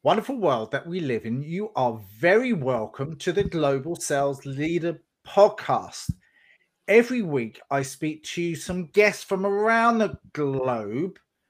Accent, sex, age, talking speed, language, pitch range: British, male, 30-49, 140 wpm, English, 140-200 Hz